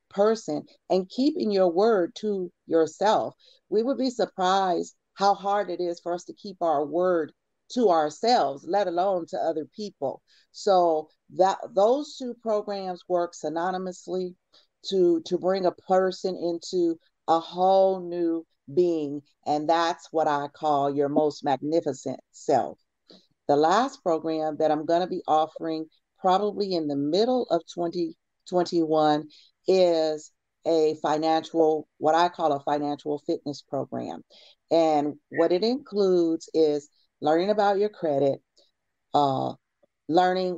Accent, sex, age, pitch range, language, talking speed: American, female, 40-59, 155-185 Hz, English, 135 wpm